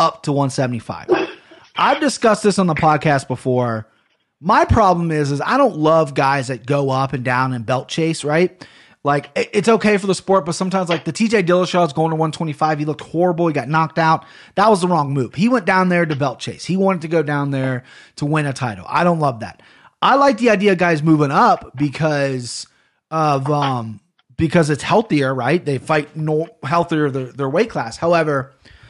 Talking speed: 210 wpm